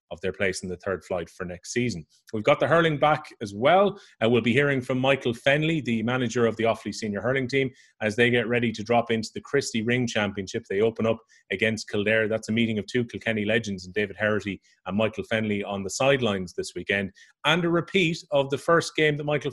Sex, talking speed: male, 225 wpm